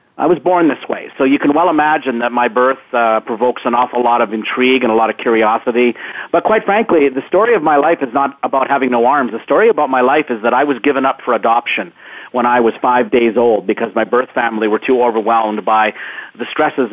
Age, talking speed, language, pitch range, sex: 40-59, 240 wpm, English, 120-140 Hz, male